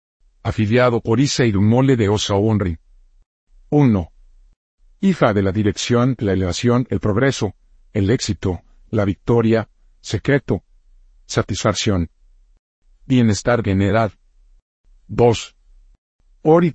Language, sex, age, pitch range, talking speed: Spanish, male, 50-69, 90-120 Hz, 95 wpm